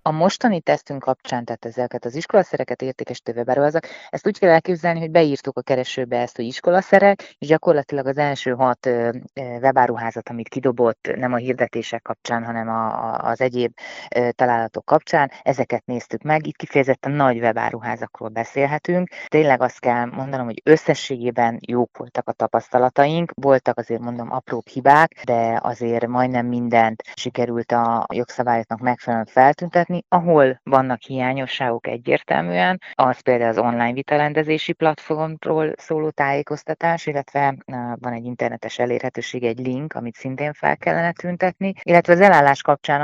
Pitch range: 120-150 Hz